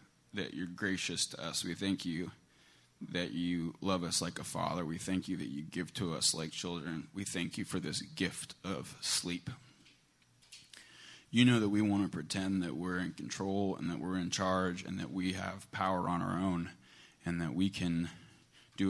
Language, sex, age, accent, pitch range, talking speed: English, male, 20-39, American, 85-95 Hz, 195 wpm